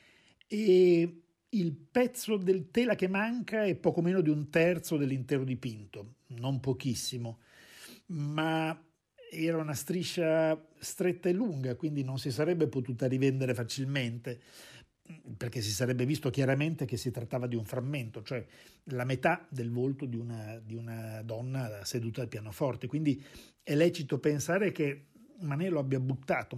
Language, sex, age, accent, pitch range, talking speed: Italian, male, 50-69, native, 125-160 Hz, 140 wpm